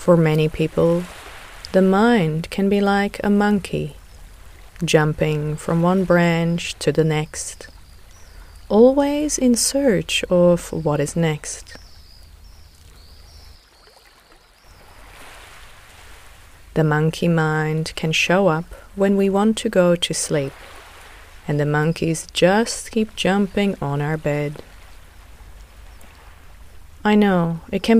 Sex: female